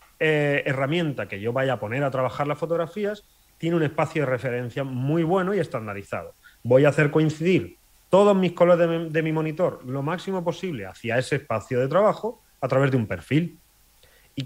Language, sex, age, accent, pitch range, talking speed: Spanish, male, 30-49, Spanish, 110-165 Hz, 185 wpm